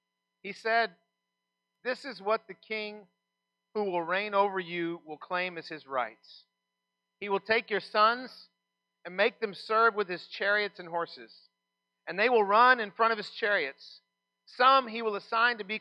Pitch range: 170-200 Hz